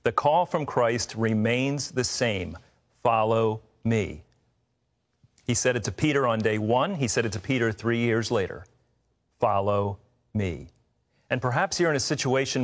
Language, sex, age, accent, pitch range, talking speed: English, male, 40-59, American, 110-130 Hz, 155 wpm